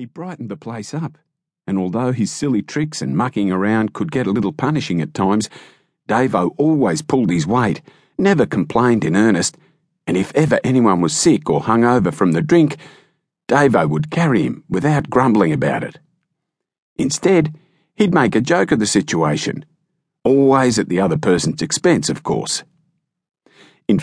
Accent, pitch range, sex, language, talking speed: Australian, 105-160 Hz, male, English, 165 wpm